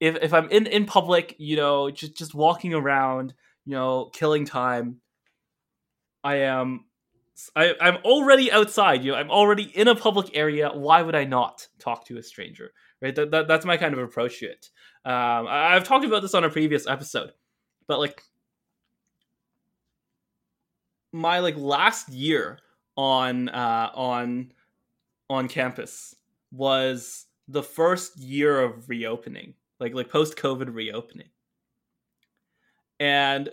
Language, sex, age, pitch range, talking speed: English, male, 20-39, 125-165 Hz, 145 wpm